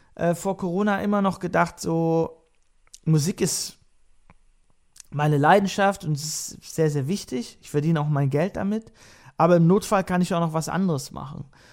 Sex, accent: male, German